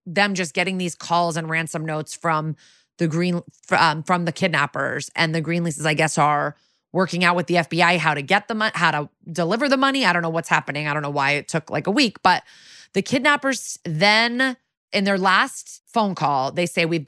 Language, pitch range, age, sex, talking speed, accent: English, 150-180 Hz, 30-49, female, 220 wpm, American